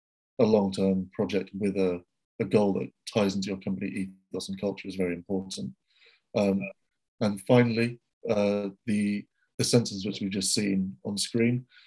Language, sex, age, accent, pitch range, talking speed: English, male, 30-49, British, 95-105 Hz, 155 wpm